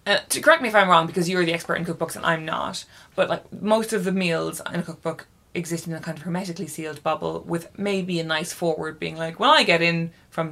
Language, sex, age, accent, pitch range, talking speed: English, female, 20-39, Irish, 165-195 Hz, 255 wpm